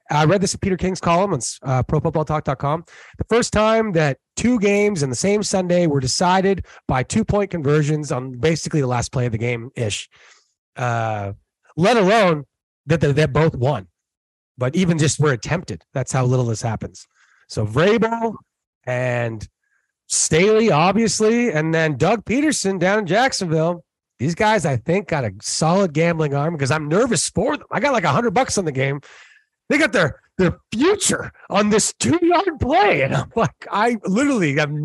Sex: male